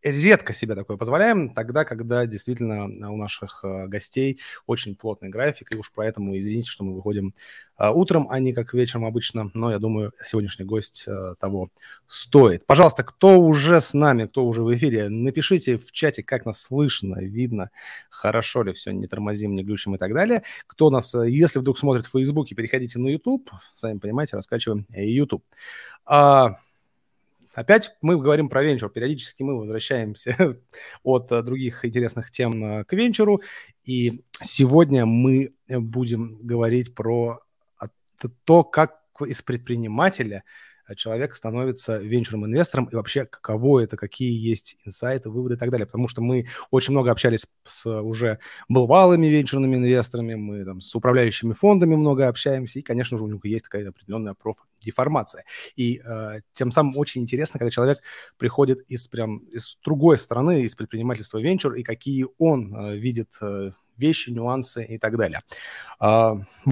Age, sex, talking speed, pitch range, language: 30-49, male, 150 wpm, 110-135 Hz, Russian